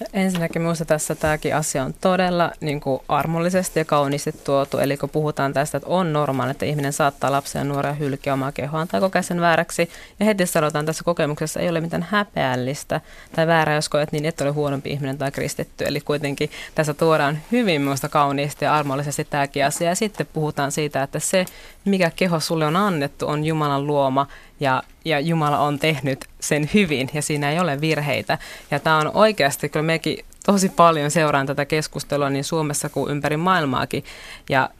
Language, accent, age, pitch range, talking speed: Finnish, native, 20-39, 140-165 Hz, 185 wpm